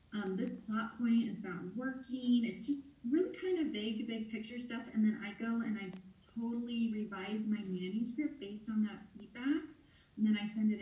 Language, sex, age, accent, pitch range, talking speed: English, female, 30-49, American, 190-245 Hz, 195 wpm